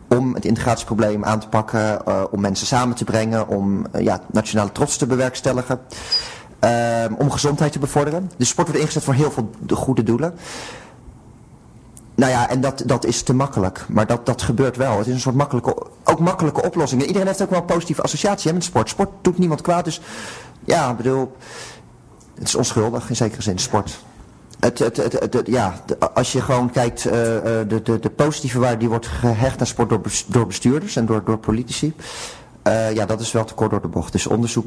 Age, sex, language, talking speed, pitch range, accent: 30-49, male, Dutch, 200 wpm, 110-135 Hz, Dutch